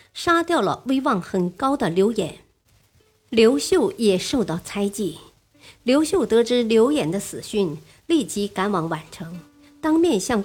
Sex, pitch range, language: male, 185-245 Hz, Chinese